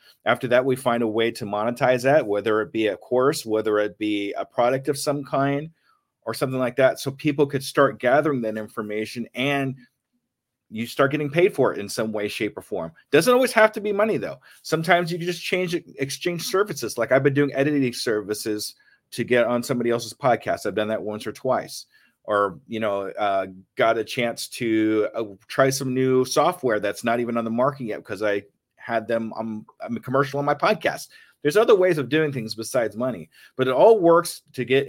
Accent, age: American, 30-49